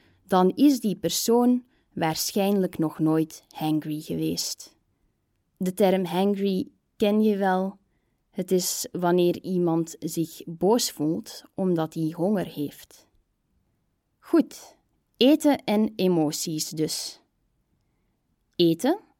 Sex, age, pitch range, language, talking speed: female, 20-39, 160-215 Hz, Dutch, 100 wpm